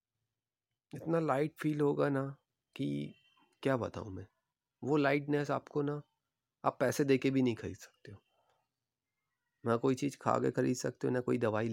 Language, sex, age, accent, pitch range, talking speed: Hindi, male, 30-49, native, 105-135 Hz, 165 wpm